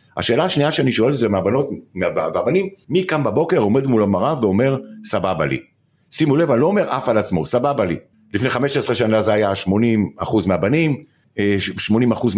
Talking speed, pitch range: 165 wpm, 90-130 Hz